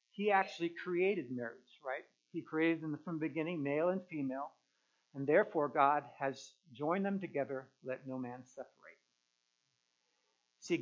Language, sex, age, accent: English, male, 60-79, American